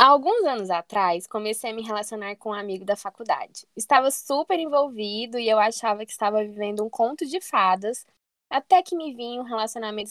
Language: Portuguese